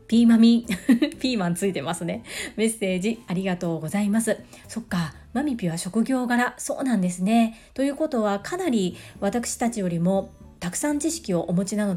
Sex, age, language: female, 40-59, Japanese